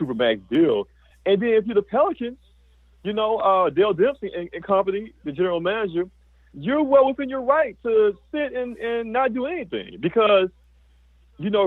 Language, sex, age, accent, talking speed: English, male, 40-59, American, 175 wpm